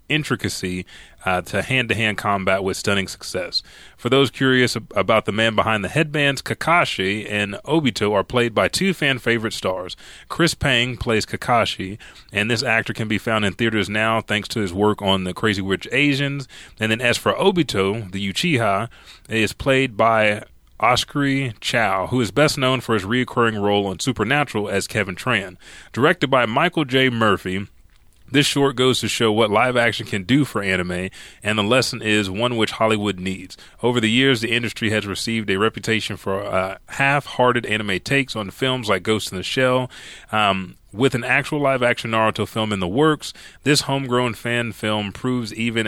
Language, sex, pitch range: English, male, 100-130 Hz